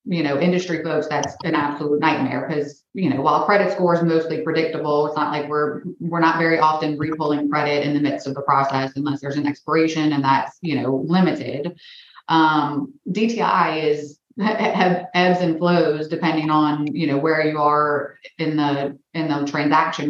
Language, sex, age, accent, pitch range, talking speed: English, female, 30-49, American, 140-160 Hz, 180 wpm